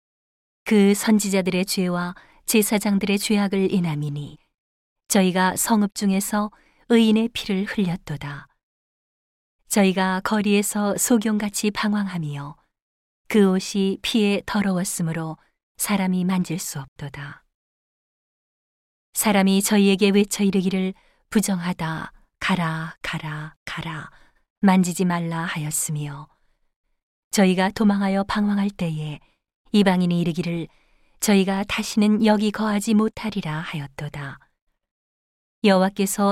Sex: female